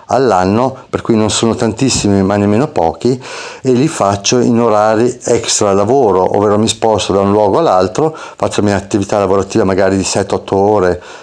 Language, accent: Italian, native